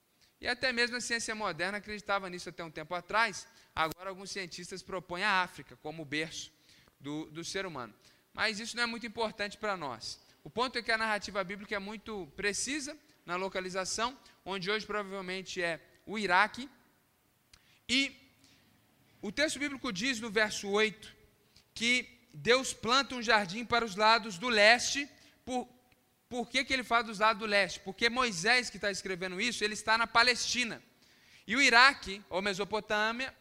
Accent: Brazilian